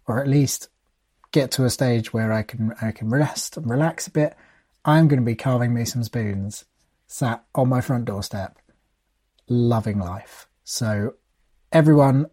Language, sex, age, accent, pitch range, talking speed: English, male, 30-49, British, 110-150 Hz, 165 wpm